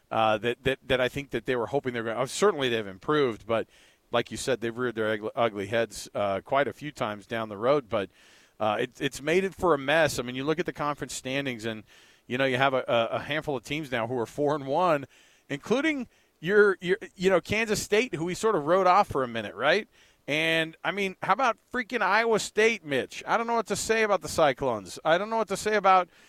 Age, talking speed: 40-59, 255 wpm